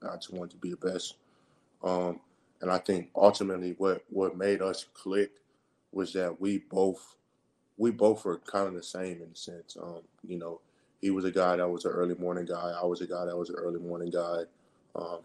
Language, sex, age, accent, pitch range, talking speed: English, male, 20-39, American, 90-95 Hz, 215 wpm